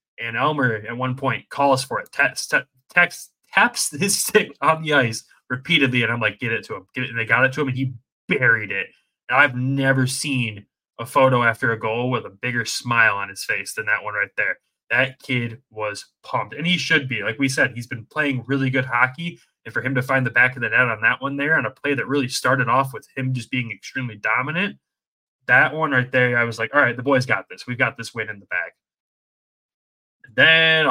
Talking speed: 240 wpm